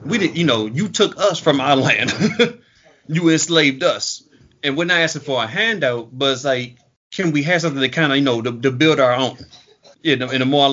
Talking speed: 245 wpm